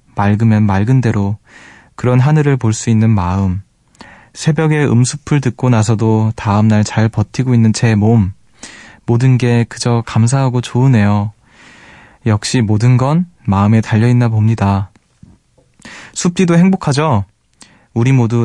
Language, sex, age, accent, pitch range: Korean, male, 20-39, native, 105-130 Hz